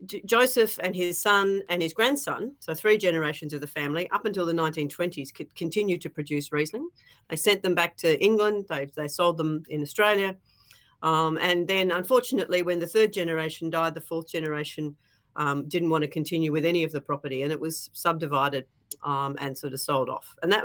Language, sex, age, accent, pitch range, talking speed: English, female, 40-59, Australian, 145-175 Hz, 200 wpm